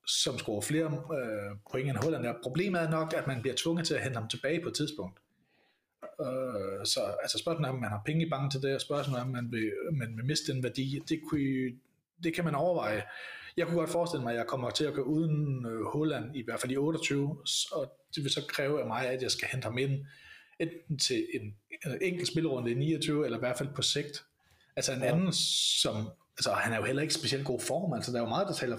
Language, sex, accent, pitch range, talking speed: Danish, male, native, 125-165 Hz, 240 wpm